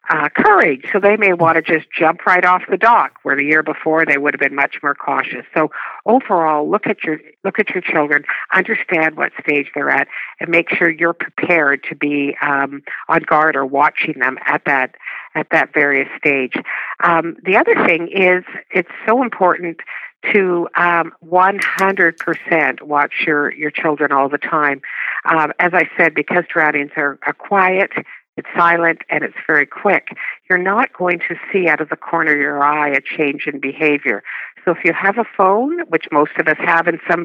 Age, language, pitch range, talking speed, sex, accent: 50-69, English, 150-180 Hz, 190 wpm, female, American